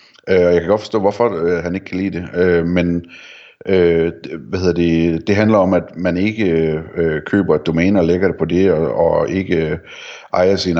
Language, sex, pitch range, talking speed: Danish, male, 85-100 Hz, 185 wpm